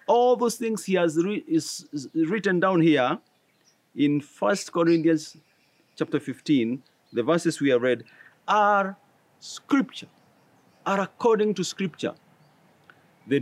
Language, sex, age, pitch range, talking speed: English, male, 50-69, 155-215 Hz, 120 wpm